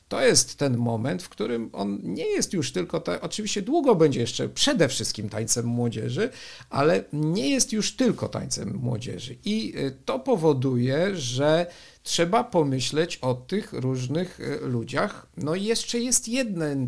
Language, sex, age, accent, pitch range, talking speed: Polish, male, 50-69, native, 120-175 Hz, 145 wpm